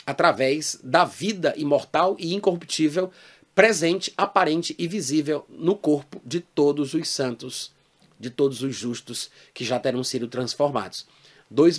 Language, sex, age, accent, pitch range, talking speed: Portuguese, male, 30-49, Brazilian, 135-180 Hz, 130 wpm